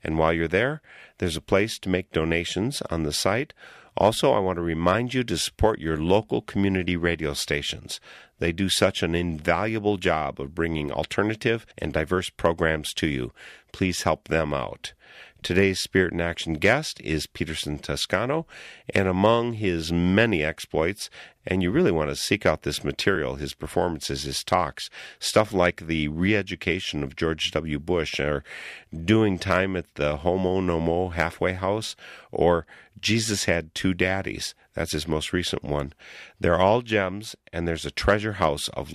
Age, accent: 50-69, American